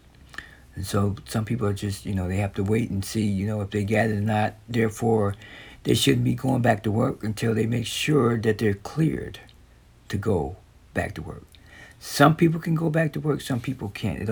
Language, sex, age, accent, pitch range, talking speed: English, male, 60-79, American, 95-120 Hz, 220 wpm